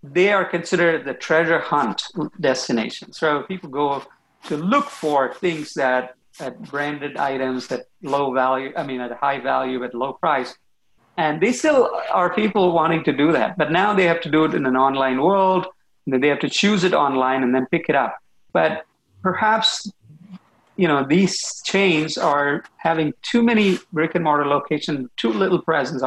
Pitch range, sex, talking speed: 130-175 Hz, male, 180 wpm